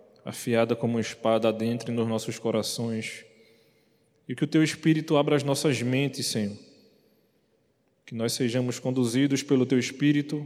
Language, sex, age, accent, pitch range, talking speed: Portuguese, male, 20-39, Brazilian, 115-135 Hz, 140 wpm